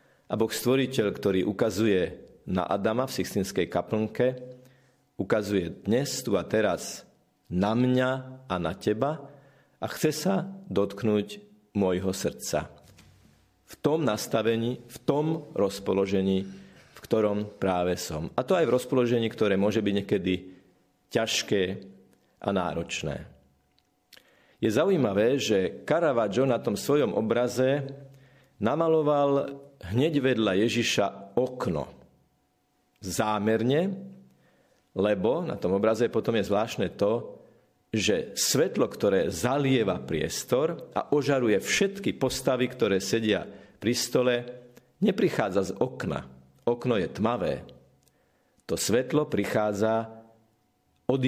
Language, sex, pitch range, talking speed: Slovak, male, 95-135 Hz, 110 wpm